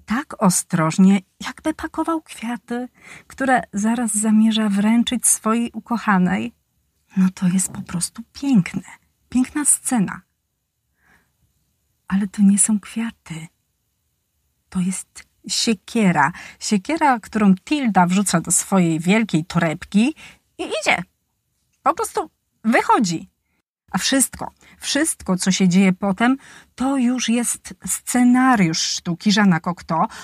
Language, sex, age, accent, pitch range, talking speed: Polish, female, 30-49, native, 190-235 Hz, 105 wpm